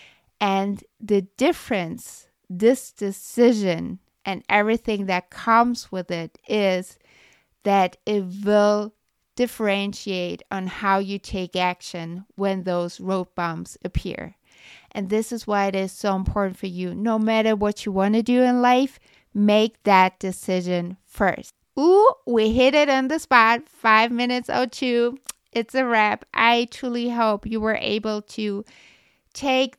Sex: female